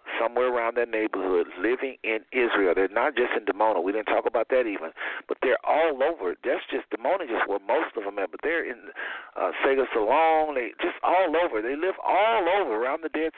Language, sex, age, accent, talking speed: English, male, 50-69, American, 215 wpm